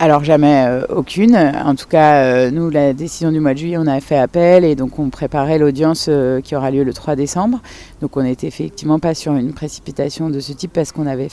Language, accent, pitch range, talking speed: French, French, 140-160 Hz, 240 wpm